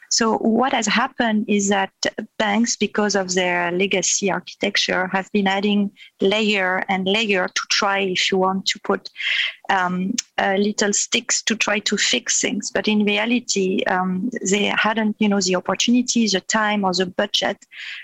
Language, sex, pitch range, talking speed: English, female, 190-215 Hz, 165 wpm